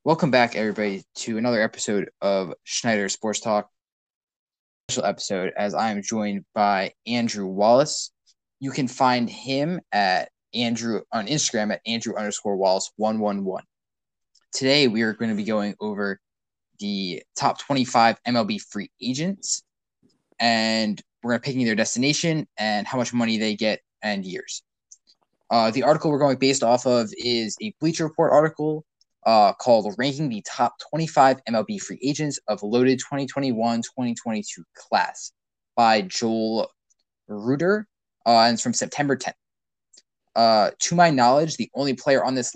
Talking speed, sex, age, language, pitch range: 150 wpm, male, 20-39, English, 105-135 Hz